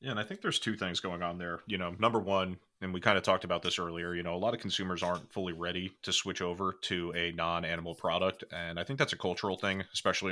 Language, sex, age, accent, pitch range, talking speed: English, male, 30-49, American, 85-95 Hz, 265 wpm